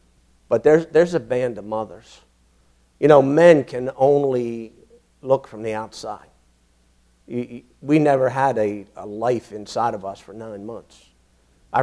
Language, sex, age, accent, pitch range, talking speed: English, male, 50-69, American, 100-140 Hz, 155 wpm